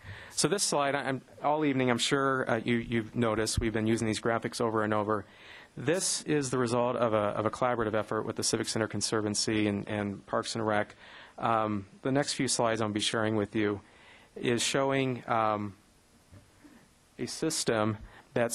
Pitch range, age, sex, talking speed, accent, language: 110-130 Hz, 40-59, male, 170 wpm, American, English